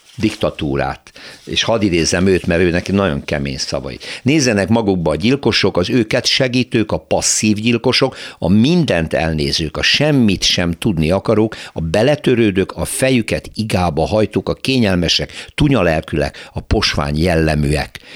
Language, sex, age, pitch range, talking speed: Hungarian, male, 60-79, 80-110 Hz, 135 wpm